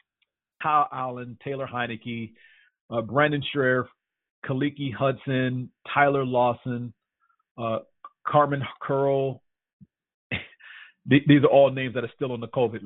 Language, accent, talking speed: English, American, 110 wpm